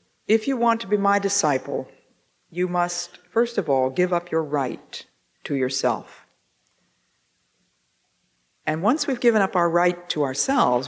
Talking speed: 150 wpm